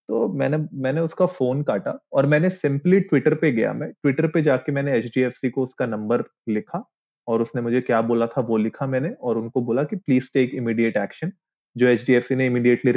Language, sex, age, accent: Hindi, male, 30-49, native